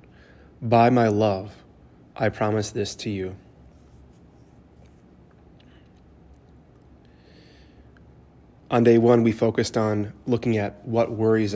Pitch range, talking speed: 80-110 Hz, 95 wpm